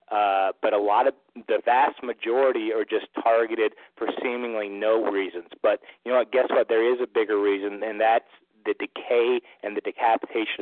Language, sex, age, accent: English, male, 40-59, American